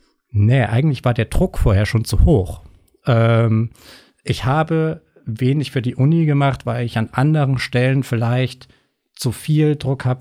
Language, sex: German, male